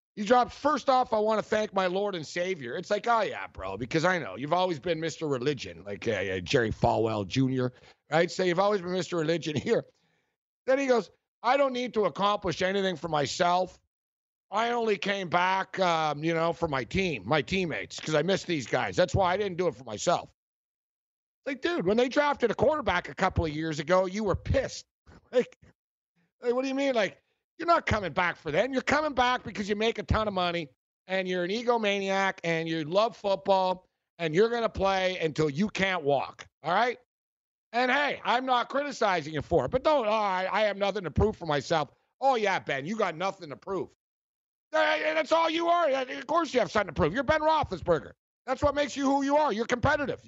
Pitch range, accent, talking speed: 160-245 Hz, American, 220 wpm